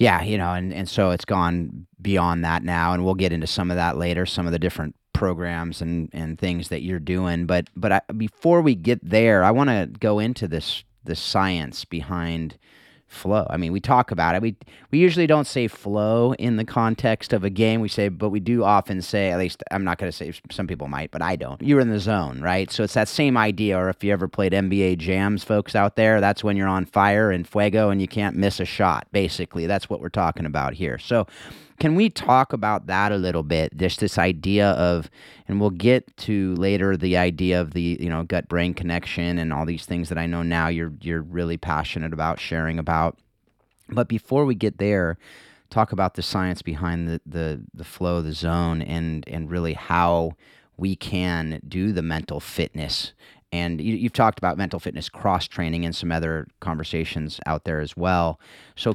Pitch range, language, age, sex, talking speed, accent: 85-105 Hz, English, 30-49, male, 215 wpm, American